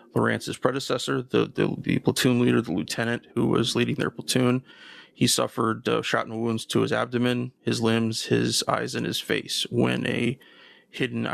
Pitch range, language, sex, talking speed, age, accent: 105-125 Hz, English, male, 175 wpm, 20-39, American